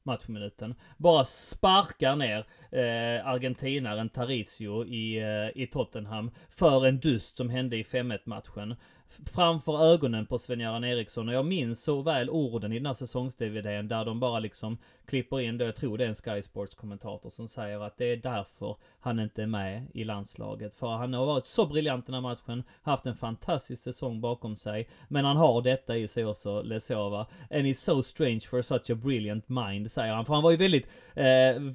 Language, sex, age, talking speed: Swedish, male, 30-49, 185 wpm